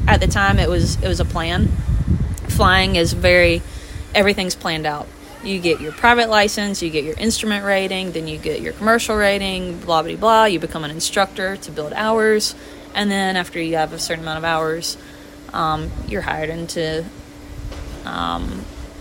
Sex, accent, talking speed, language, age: female, American, 175 wpm, English, 20-39